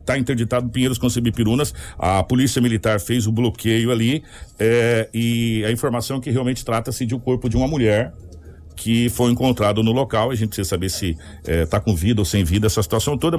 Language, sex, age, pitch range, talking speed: Portuguese, male, 60-79, 100-125 Hz, 205 wpm